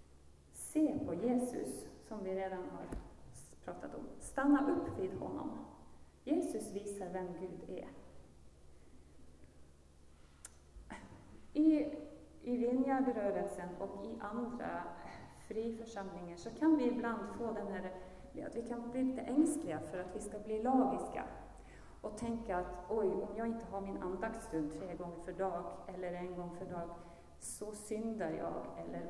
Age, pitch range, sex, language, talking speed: 30-49, 165-260 Hz, female, Swedish, 140 wpm